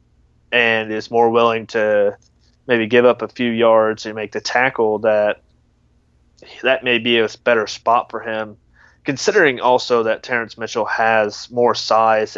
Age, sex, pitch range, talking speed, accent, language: 30-49, male, 80-120 Hz, 155 wpm, American, English